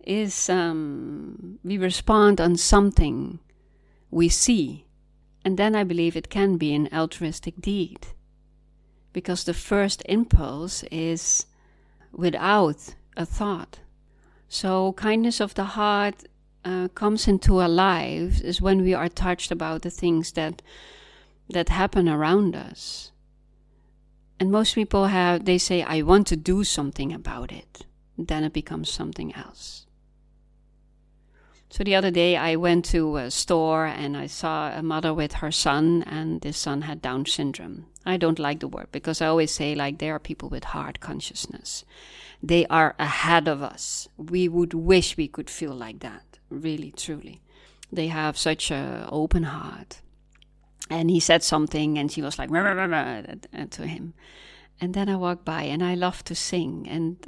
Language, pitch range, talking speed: English, 155-185 Hz, 155 wpm